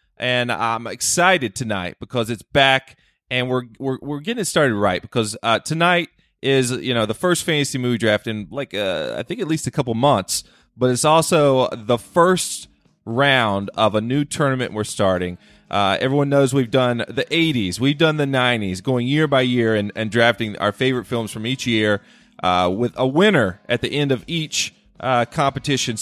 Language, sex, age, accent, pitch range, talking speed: English, male, 30-49, American, 115-155 Hz, 190 wpm